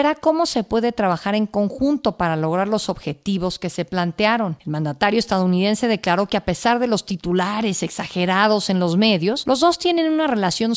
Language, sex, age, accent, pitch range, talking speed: Spanish, female, 50-69, Mexican, 180-235 Hz, 180 wpm